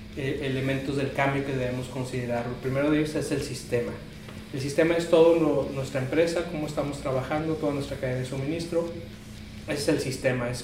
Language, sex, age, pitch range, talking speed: Spanish, male, 40-59, 130-160 Hz, 185 wpm